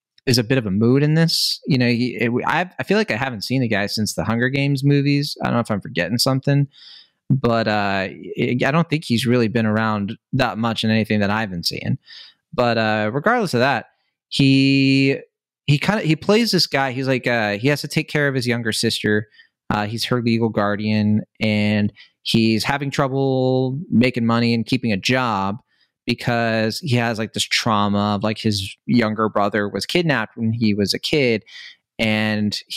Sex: male